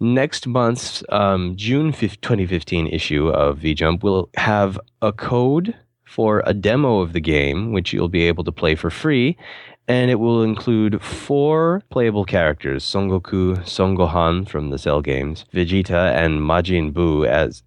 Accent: American